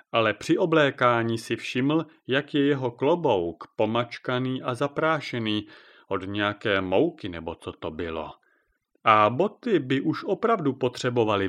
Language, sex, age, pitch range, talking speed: Czech, male, 40-59, 110-150 Hz, 130 wpm